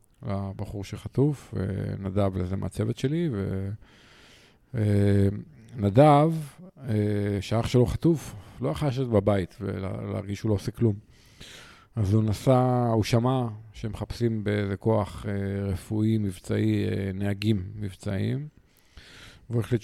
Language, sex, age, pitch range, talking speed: Hebrew, male, 50-69, 100-120 Hz, 105 wpm